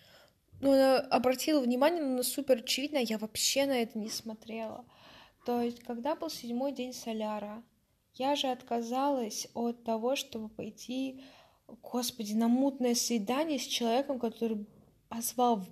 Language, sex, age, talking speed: Russian, female, 20-39, 135 wpm